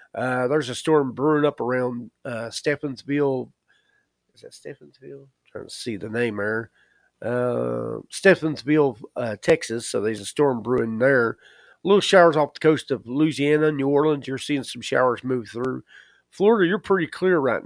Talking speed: 165 wpm